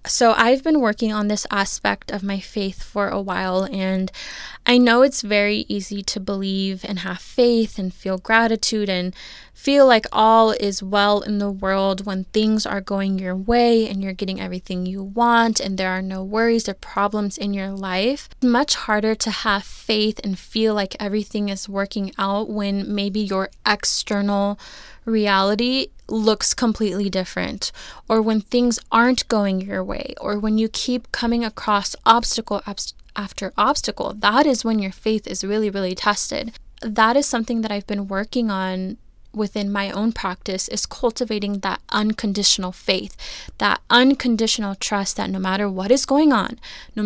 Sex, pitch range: female, 195-230 Hz